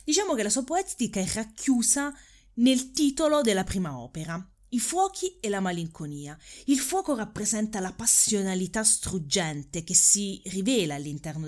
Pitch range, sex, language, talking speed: 155-220 Hz, female, Italian, 140 wpm